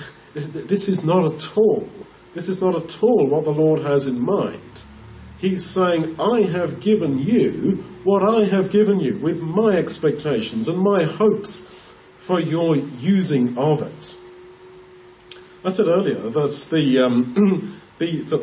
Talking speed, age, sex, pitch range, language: 150 wpm, 50-69, male, 140-185 Hz, English